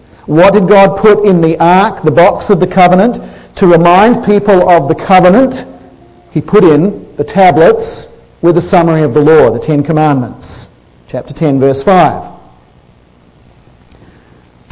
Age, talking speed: 50-69, 145 wpm